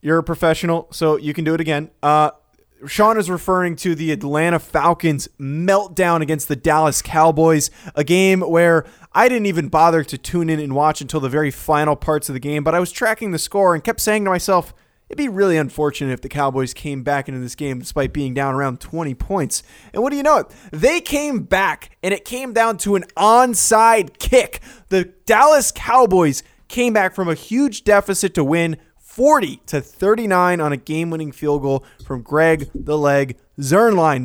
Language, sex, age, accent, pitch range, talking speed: English, male, 20-39, American, 150-195 Hz, 195 wpm